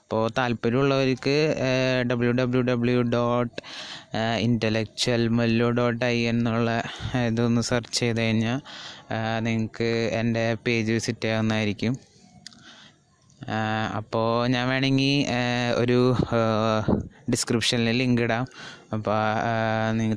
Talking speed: 85 wpm